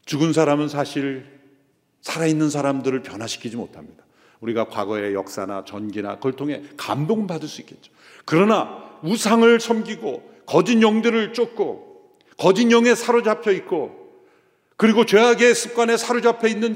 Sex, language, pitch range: male, Korean, 155-240 Hz